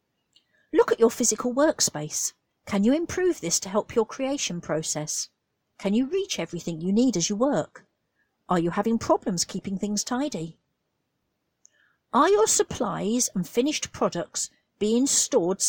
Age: 50-69